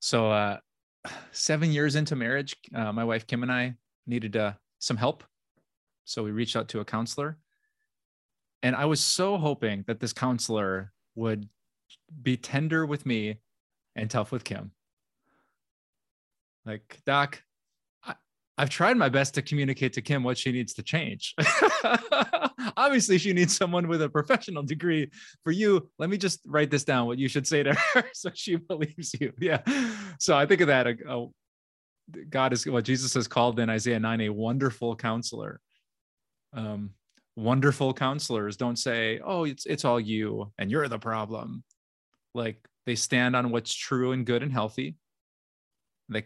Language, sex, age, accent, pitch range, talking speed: English, male, 20-39, American, 115-150 Hz, 165 wpm